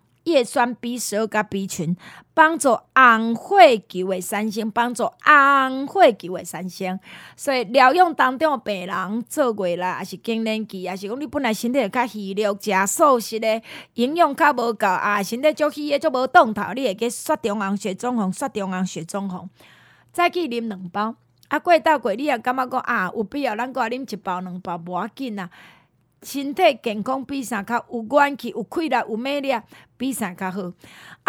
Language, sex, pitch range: Chinese, female, 205-280 Hz